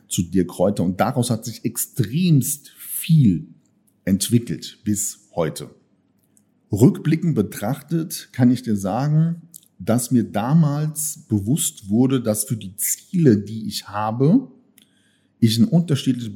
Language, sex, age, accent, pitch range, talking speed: German, male, 50-69, German, 100-130 Hz, 120 wpm